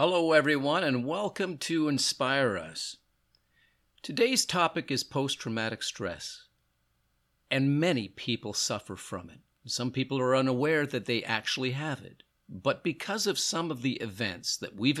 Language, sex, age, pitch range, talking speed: English, male, 50-69, 100-135 Hz, 145 wpm